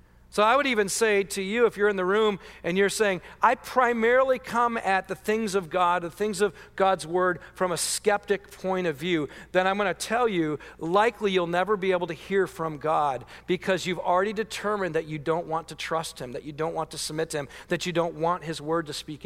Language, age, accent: English, 40-59, American